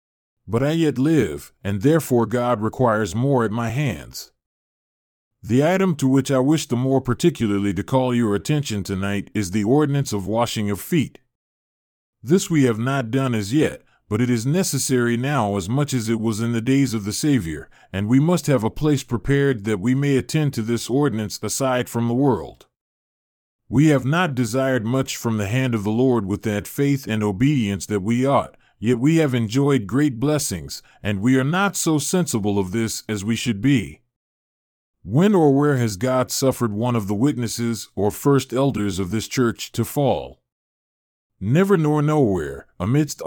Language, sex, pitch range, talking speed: English, male, 110-140 Hz, 185 wpm